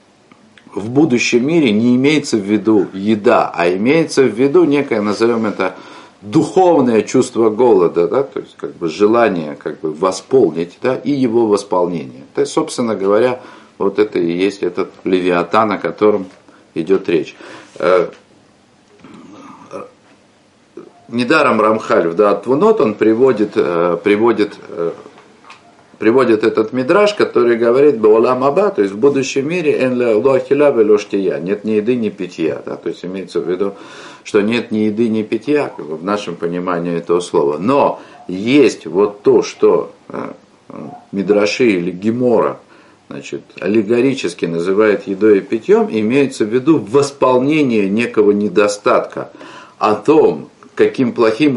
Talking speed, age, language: 130 wpm, 50-69, Russian